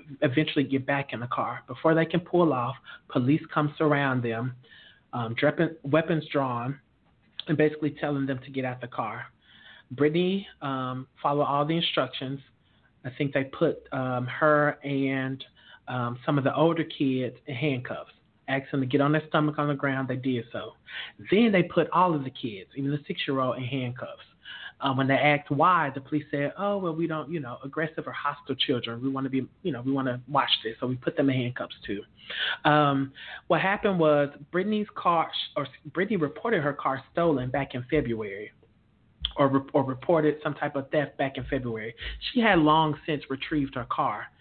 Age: 30-49